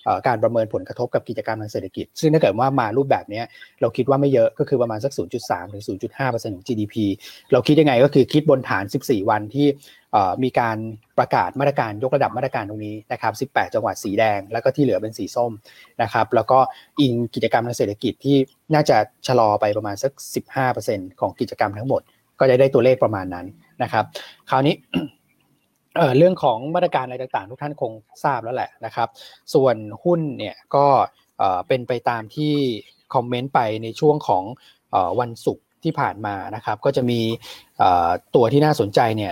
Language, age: Thai, 20-39